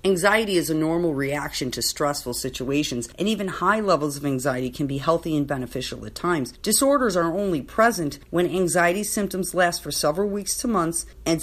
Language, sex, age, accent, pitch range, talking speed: English, female, 40-59, American, 145-190 Hz, 185 wpm